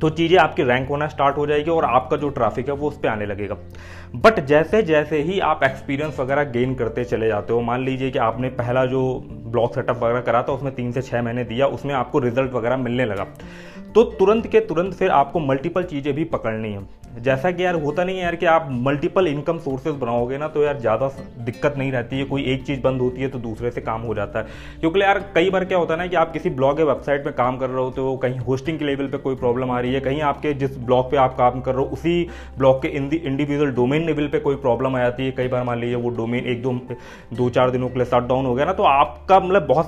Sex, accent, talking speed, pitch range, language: male, native, 220 wpm, 125-160 Hz, Hindi